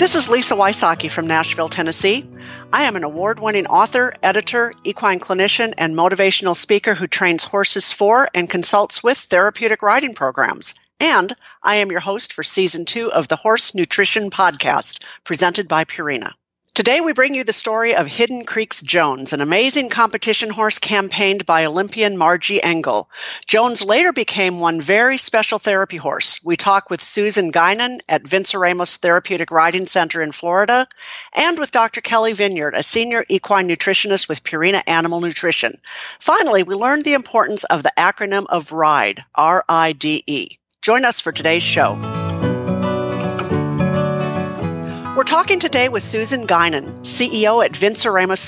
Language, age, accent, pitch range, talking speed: English, 50-69, American, 165-225 Hz, 150 wpm